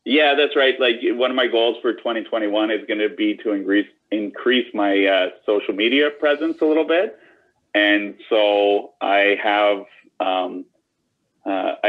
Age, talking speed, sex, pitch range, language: 30-49, 155 wpm, male, 100-160 Hz, English